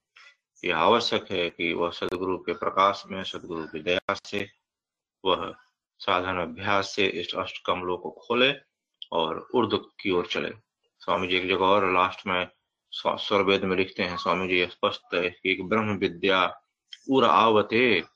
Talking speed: 130 wpm